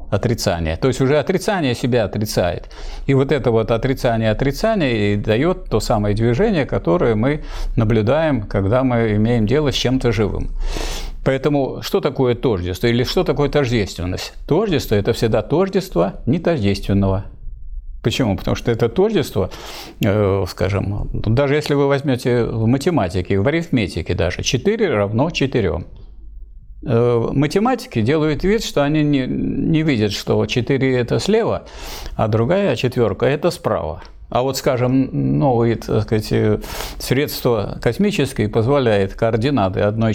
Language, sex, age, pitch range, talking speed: Russian, male, 50-69, 105-145 Hz, 130 wpm